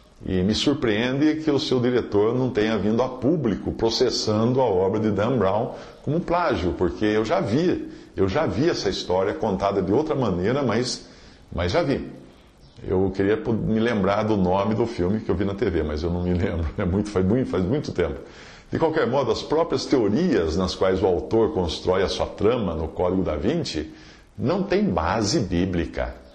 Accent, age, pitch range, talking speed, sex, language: Brazilian, 50-69, 90-130 Hz, 185 wpm, male, Portuguese